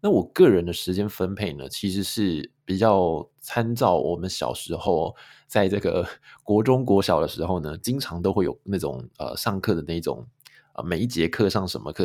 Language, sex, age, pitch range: Chinese, male, 20-39, 85-115 Hz